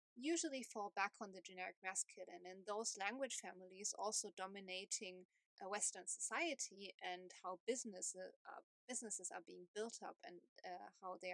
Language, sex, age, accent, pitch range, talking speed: English, female, 20-39, German, 195-250 Hz, 160 wpm